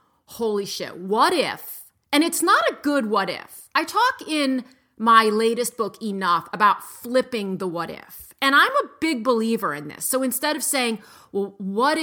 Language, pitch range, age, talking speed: English, 205-280 Hz, 30-49, 180 wpm